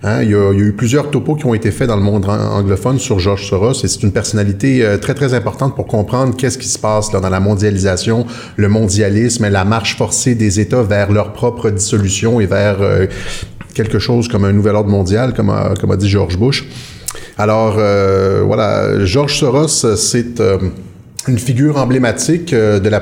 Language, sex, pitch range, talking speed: French, male, 105-125 Hz, 205 wpm